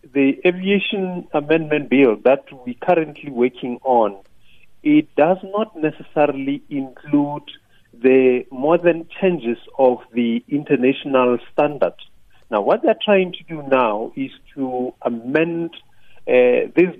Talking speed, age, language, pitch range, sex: 125 wpm, 40-59, English, 120-160 Hz, male